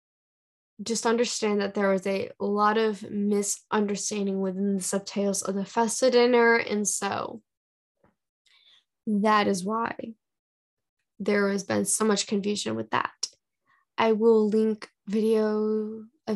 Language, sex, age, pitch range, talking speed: English, female, 10-29, 200-235 Hz, 125 wpm